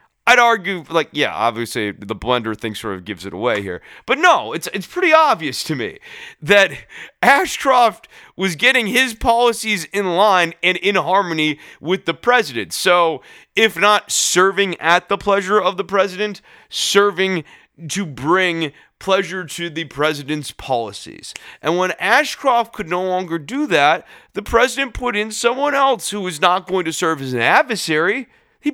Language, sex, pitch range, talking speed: English, male, 145-210 Hz, 165 wpm